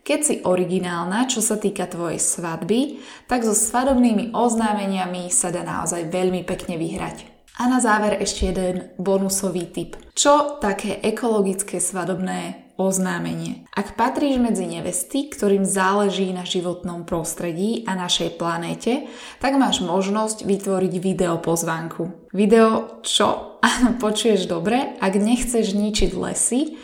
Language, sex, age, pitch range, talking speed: Slovak, female, 10-29, 180-220 Hz, 125 wpm